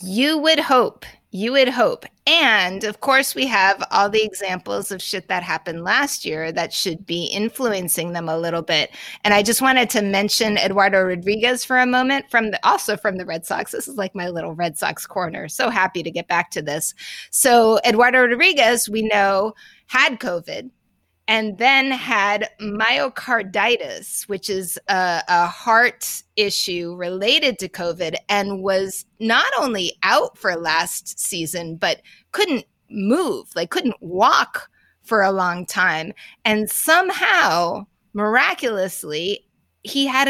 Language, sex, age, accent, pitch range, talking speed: English, female, 30-49, American, 185-250 Hz, 155 wpm